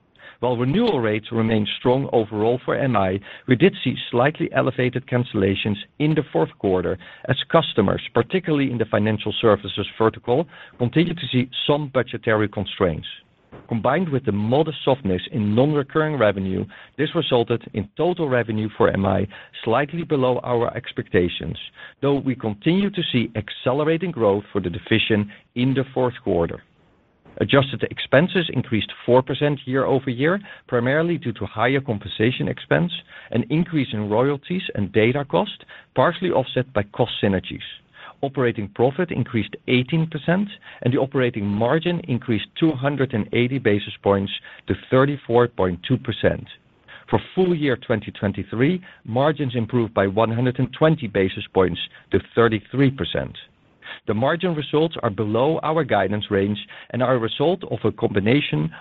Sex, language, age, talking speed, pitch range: male, English, 50-69, 135 wpm, 105-145 Hz